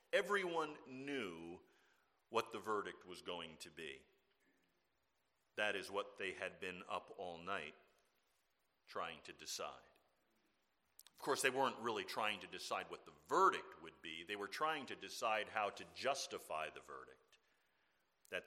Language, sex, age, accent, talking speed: English, male, 50-69, American, 145 wpm